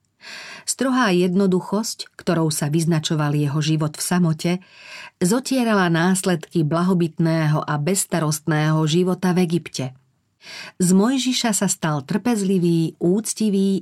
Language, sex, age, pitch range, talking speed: Slovak, female, 40-59, 160-195 Hz, 100 wpm